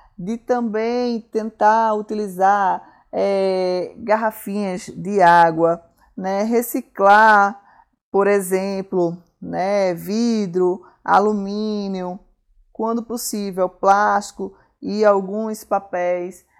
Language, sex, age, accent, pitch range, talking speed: Portuguese, female, 20-39, Brazilian, 195-235 Hz, 70 wpm